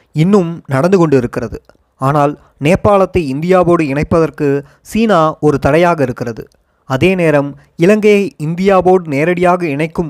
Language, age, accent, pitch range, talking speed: Tamil, 20-39, native, 140-185 Hz, 100 wpm